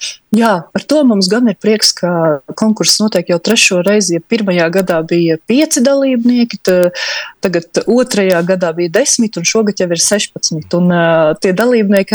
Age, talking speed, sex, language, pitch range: 30-49, 145 wpm, female, Russian, 180-235 Hz